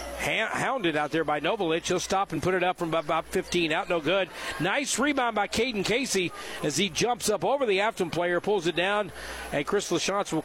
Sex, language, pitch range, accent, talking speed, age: male, English, 160-195 Hz, American, 210 wpm, 50-69